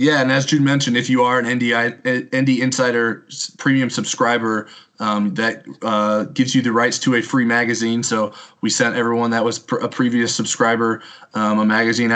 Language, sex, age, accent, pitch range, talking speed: English, male, 20-39, American, 110-125 Hz, 190 wpm